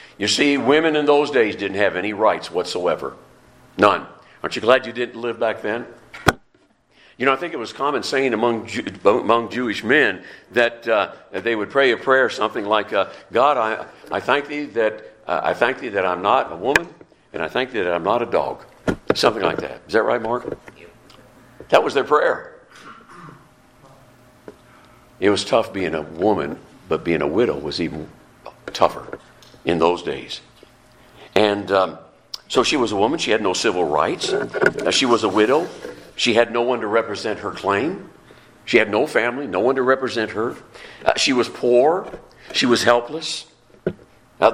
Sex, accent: male, American